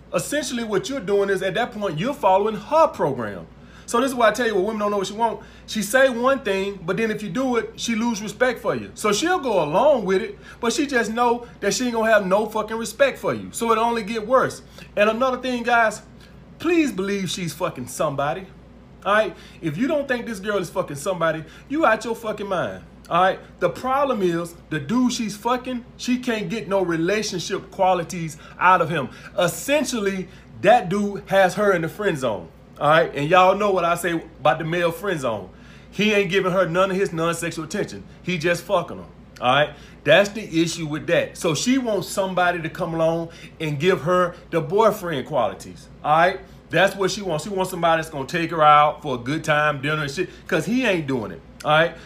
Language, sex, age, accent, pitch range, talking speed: English, male, 30-49, American, 170-230 Hz, 215 wpm